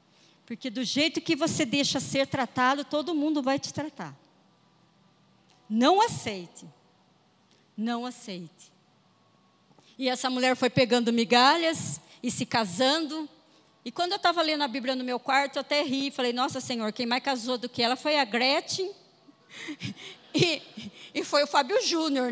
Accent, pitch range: Brazilian, 230-320 Hz